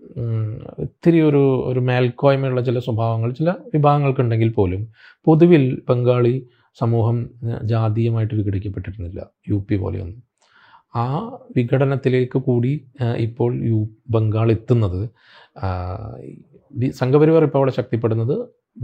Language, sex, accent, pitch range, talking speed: English, male, Indian, 100-125 Hz, 115 wpm